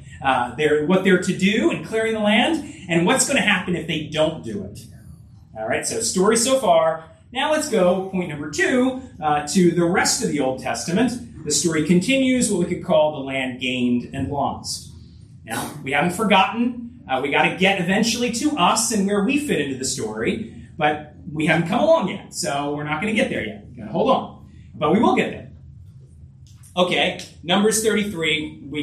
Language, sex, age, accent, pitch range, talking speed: English, male, 30-49, American, 155-225 Hz, 205 wpm